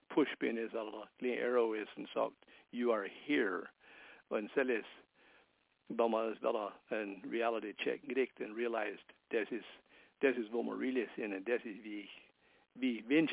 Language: English